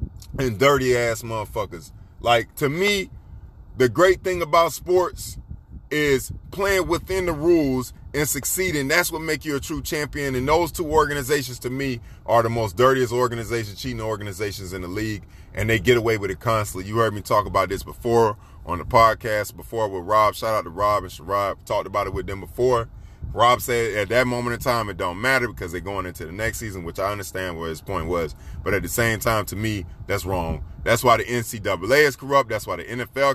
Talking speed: 210 wpm